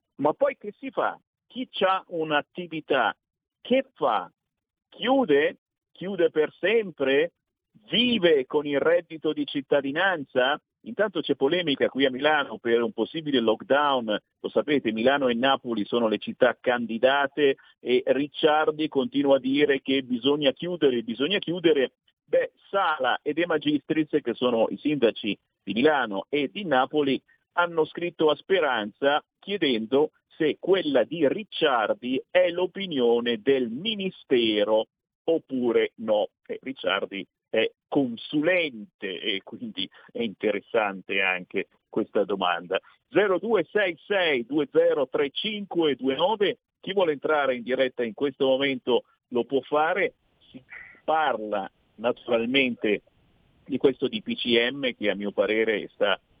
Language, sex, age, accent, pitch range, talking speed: Italian, male, 50-69, native, 130-210 Hz, 120 wpm